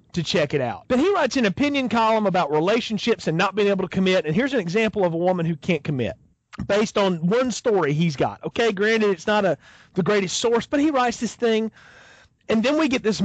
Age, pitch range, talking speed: 40-59, 165-225 Hz, 235 wpm